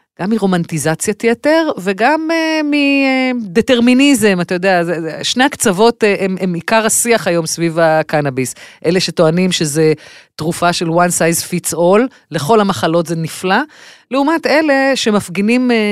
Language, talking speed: Hebrew, 125 wpm